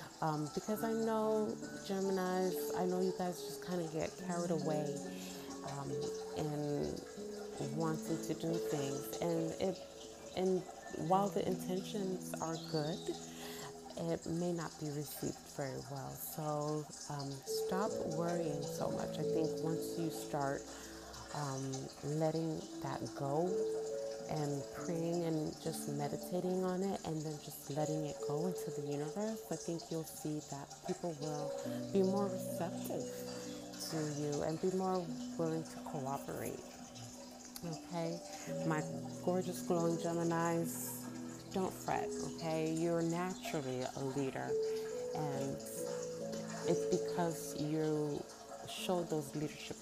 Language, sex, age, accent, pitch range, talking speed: English, female, 30-49, American, 125-175 Hz, 125 wpm